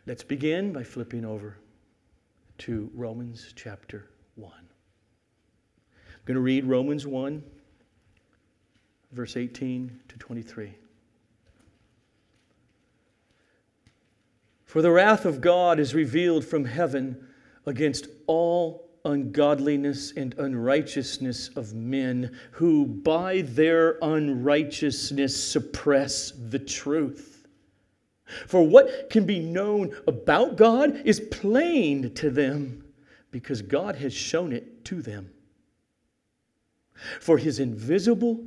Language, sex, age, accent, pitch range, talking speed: English, male, 50-69, American, 120-175 Hz, 100 wpm